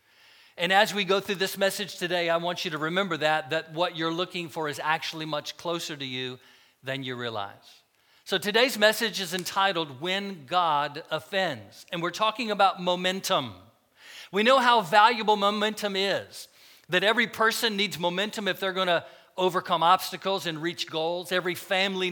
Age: 50-69